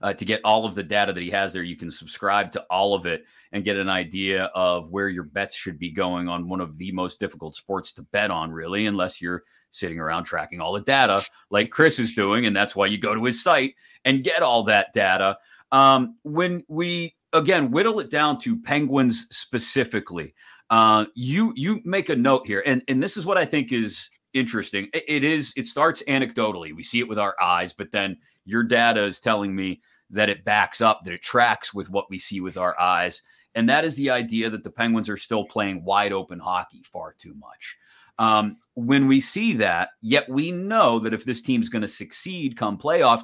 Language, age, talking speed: English, 30-49, 220 wpm